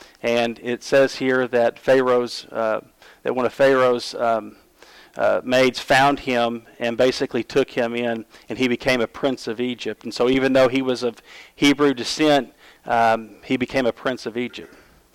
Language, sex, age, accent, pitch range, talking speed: English, male, 40-59, American, 115-130 Hz, 175 wpm